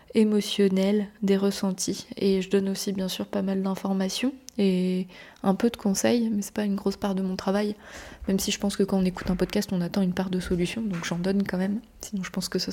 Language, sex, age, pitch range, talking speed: French, female, 20-39, 185-205 Hz, 250 wpm